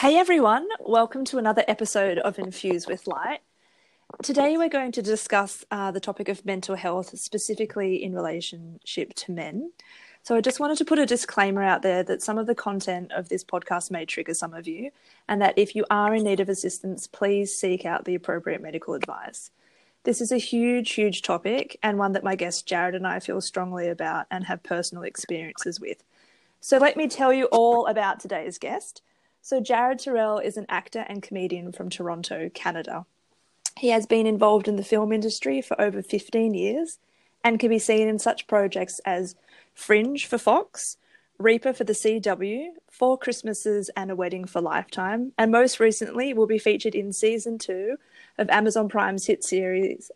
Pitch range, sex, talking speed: 190-235 Hz, female, 185 wpm